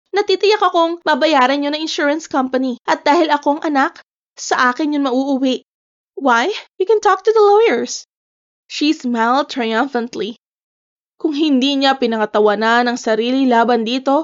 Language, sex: Filipino, female